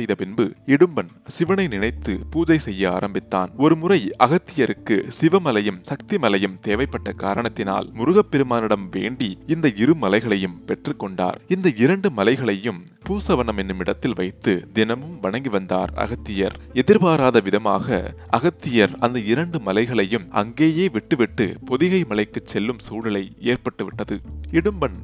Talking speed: 110 wpm